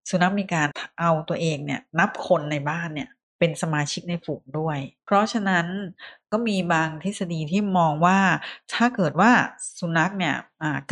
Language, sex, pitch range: Thai, female, 155-195 Hz